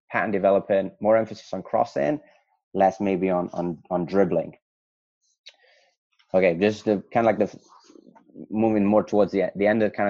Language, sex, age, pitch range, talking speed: English, male, 20-39, 85-105 Hz, 165 wpm